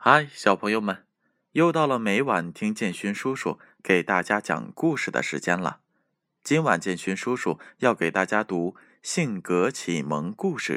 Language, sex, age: Chinese, male, 20-39